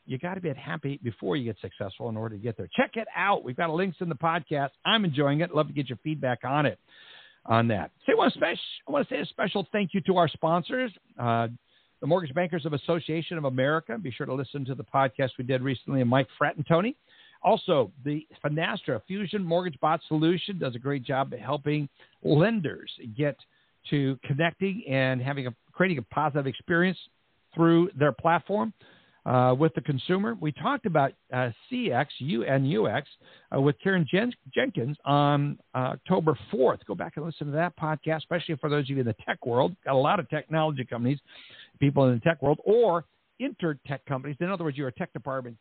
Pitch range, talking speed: 125-170 Hz, 205 wpm